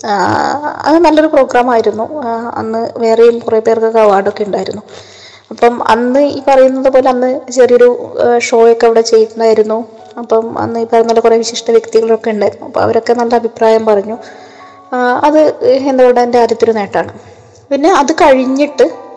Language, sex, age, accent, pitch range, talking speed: Malayalam, female, 20-39, native, 230-295 Hz, 125 wpm